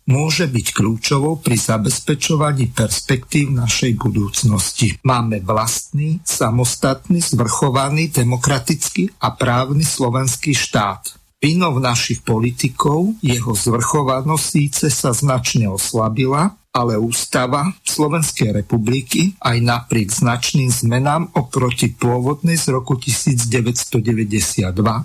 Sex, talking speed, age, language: male, 90 wpm, 50-69, Slovak